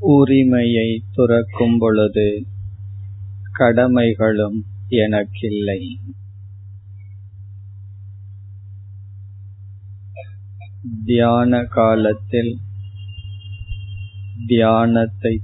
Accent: native